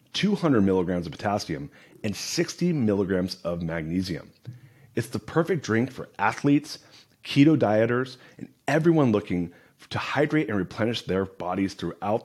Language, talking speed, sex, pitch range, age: English, 130 wpm, male, 100-135 Hz, 30-49